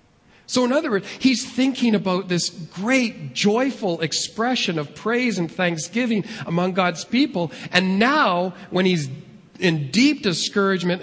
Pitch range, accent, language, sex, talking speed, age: 145-205 Hz, American, English, male, 135 wpm, 40-59